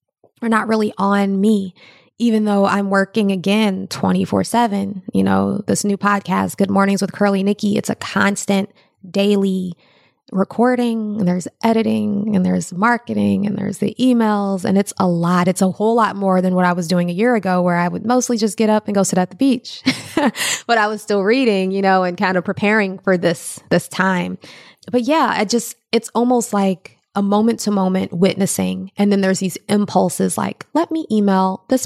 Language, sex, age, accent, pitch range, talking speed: English, female, 20-39, American, 190-215 Hz, 195 wpm